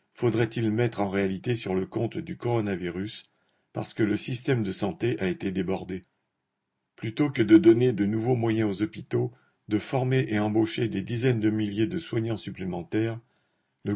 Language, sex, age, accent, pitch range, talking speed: French, male, 50-69, French, 100-125 Hz, 170 wpm